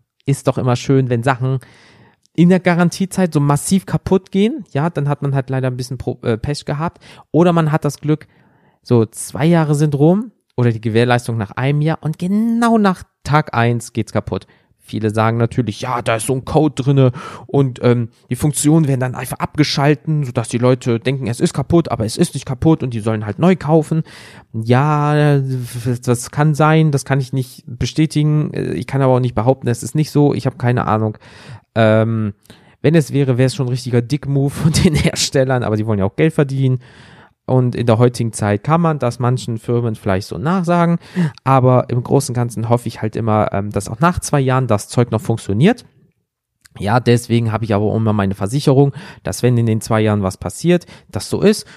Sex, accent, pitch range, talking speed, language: male, German, 115-150 Hz, 205 wpm, German